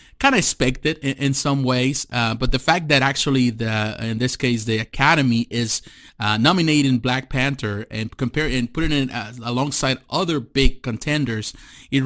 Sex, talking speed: male, 190 wpm